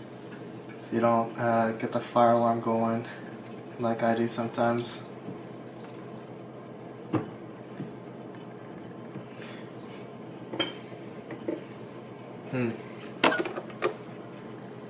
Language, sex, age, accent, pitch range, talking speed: English, male, 20-39, American, 115-130 Hz, 50 wpm